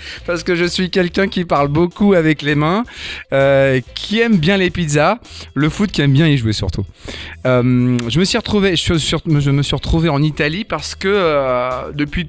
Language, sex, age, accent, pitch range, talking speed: French, male, 30-49, French, 115-145 Hz, 205 wpm